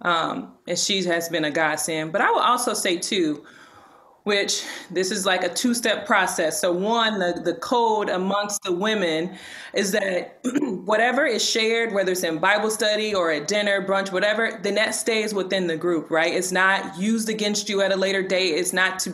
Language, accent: English, American